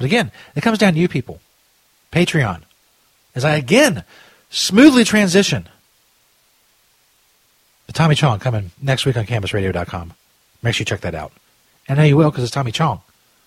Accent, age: American, 40-59